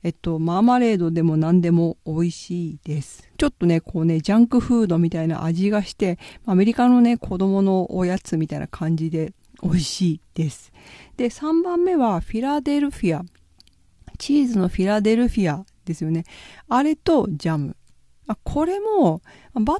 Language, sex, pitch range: Japanese, female, 165-240 Hz